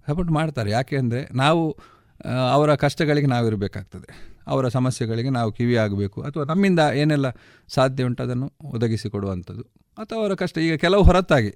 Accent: native